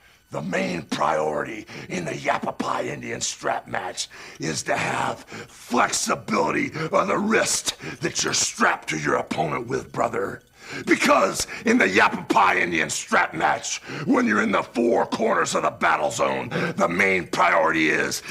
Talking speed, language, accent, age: 145 wpm, English, American, 50-69